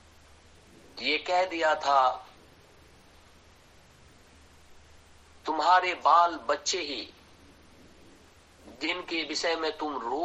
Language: Hindi